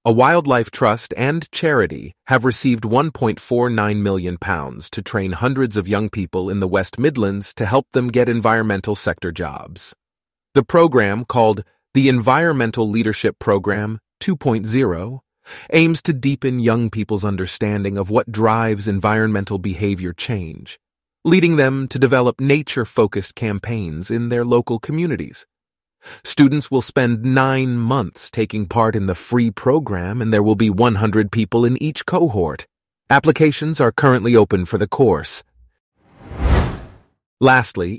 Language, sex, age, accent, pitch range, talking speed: English, male, 30-49, American, 100-130 Hz, 135 wpm